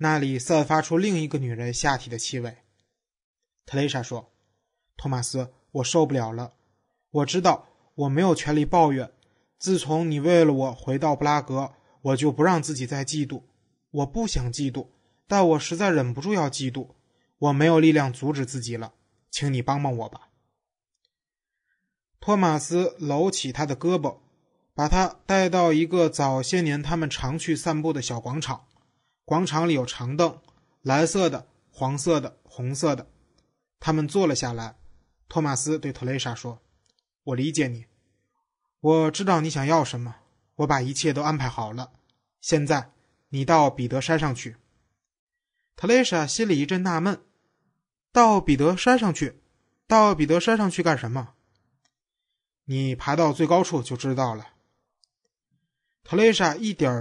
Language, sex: Chinese, male